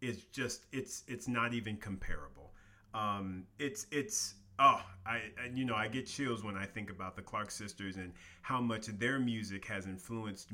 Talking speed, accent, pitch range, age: 175 wpm, American, 100-120 Hz, 40-59